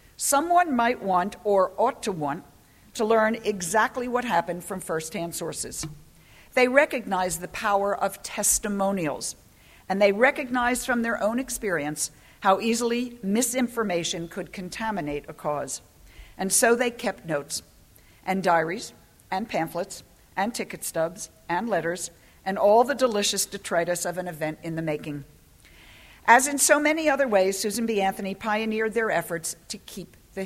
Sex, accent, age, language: female, American, 50-69, English